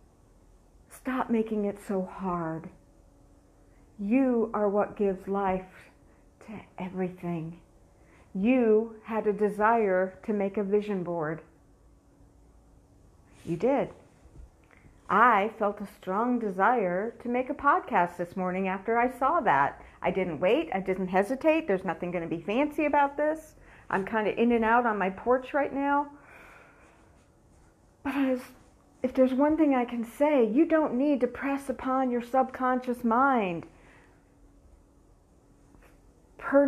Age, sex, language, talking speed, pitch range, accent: 50-69, female, English, 135 wpm, 180-255 Hz, American